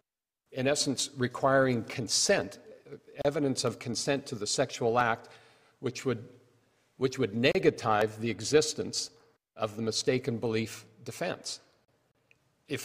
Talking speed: 110 wpm